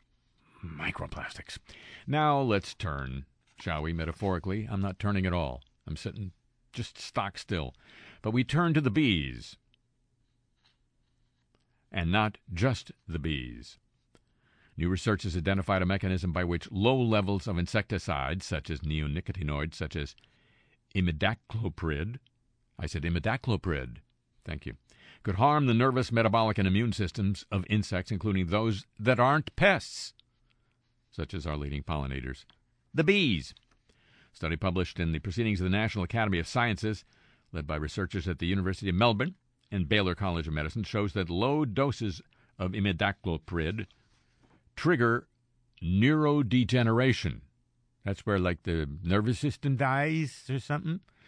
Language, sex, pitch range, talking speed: English, male, 90-120 Hz, 135 wpm